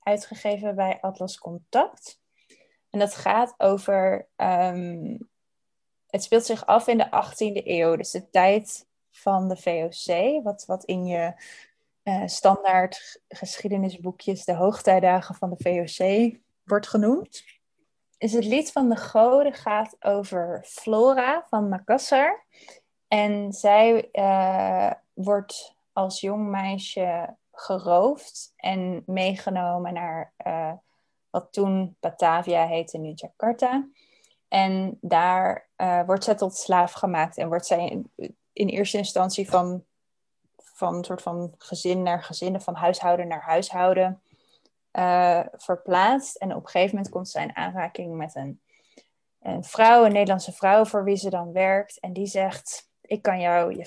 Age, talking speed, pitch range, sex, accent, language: 20-39, 135 wpm, 180-210 Hz, female, Dutch, Dutch